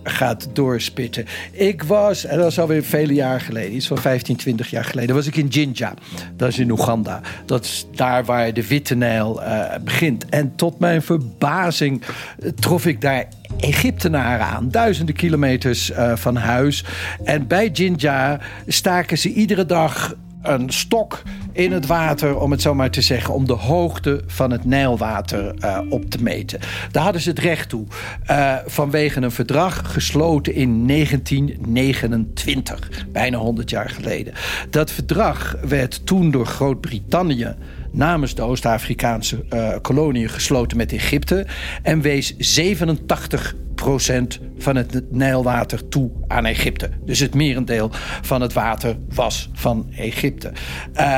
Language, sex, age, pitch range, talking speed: Dutch, male, 60-79, 110-150 Hz, 150 wpm